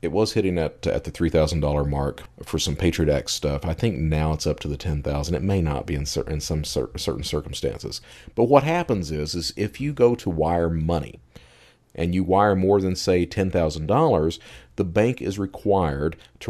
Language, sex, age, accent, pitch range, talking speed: English, male, 40-59, American, 80-105 Hz, 195 wpm